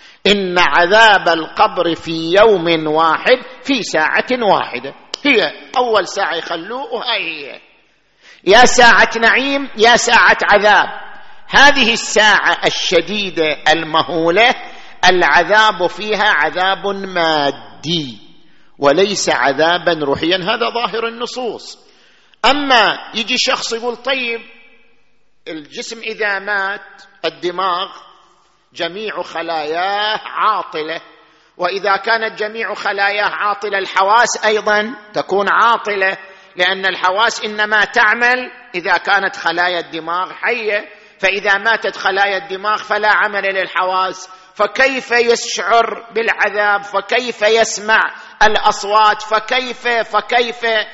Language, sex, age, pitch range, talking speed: Arabic, male, 50-69, 180-230 Hz, 95 wpm